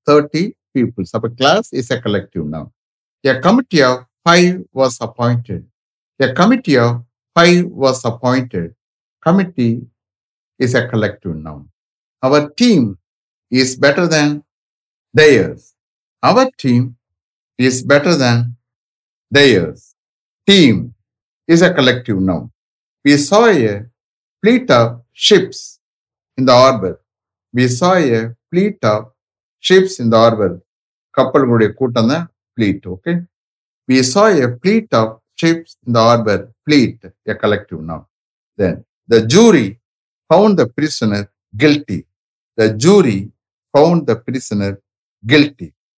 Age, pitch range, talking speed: 60-79, 110-150 Hz, 125 wpm